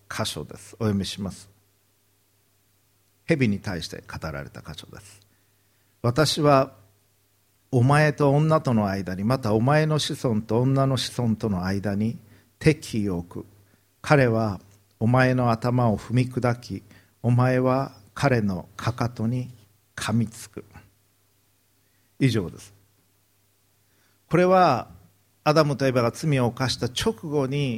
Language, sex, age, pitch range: Japanese, male, 50-69, 100-130 Hz